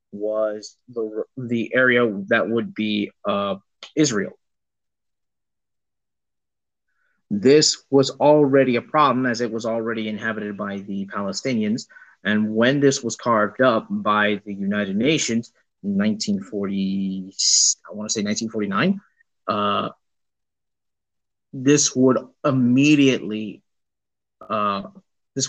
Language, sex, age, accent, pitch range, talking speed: English, male, 30-49, American, 110-145 Hz, 95 wpm